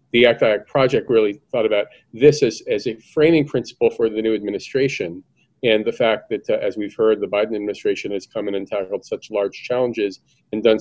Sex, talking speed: male, 205 wpm